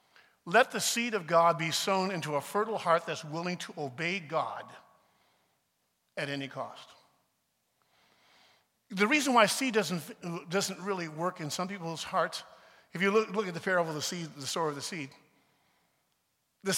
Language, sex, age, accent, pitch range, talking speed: English, male, 50-69, American, 175-220 Hz, 170 wpm